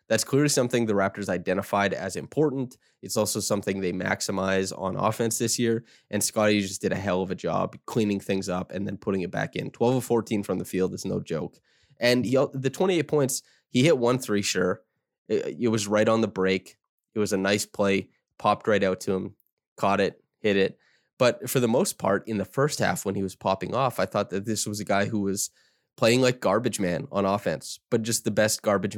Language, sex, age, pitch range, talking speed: English, male, 20-39, 100-120 Hz, 220 wpm